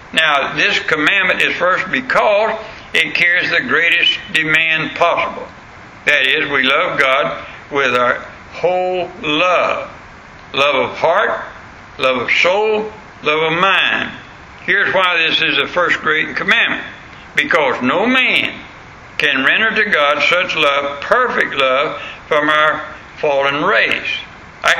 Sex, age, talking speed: male, 60-79, 130 wpm